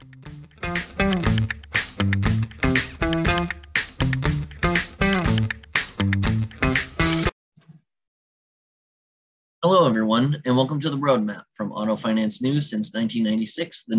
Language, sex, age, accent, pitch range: English, male, 30-49, American, 110-140 Hz